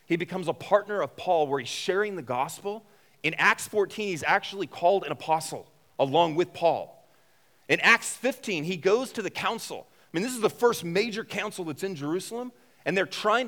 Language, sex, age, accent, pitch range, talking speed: English, male, 30-49, American, 115-185 Hz, 195 wpm